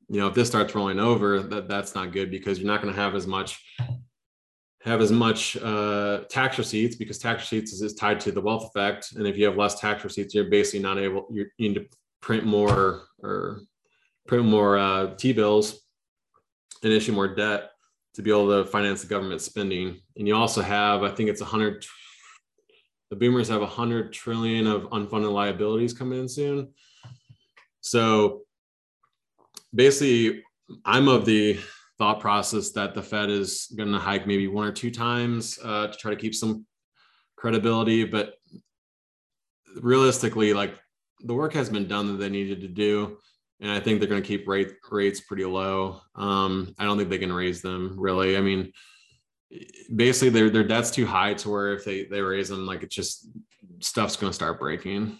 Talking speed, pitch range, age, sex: 180 wpm, 100-115 Hz, 20-39, male